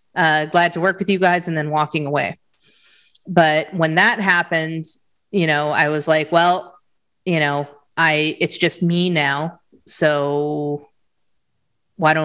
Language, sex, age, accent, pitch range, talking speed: English, female, 30-49, American, 160-185 Hz, 150 wpm